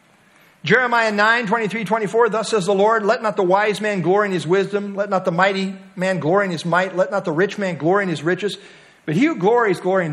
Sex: male